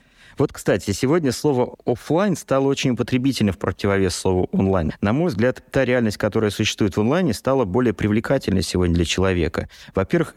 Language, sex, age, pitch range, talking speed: Russian, male, 30-49, 85-115 Hz, 160 wpm